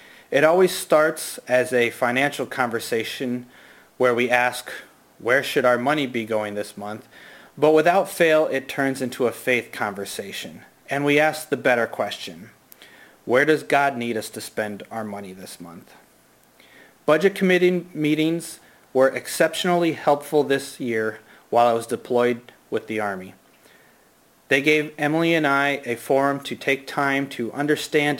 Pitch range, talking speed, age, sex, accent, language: 115-150 Hz, 150 wpm, 30-49, male, American, English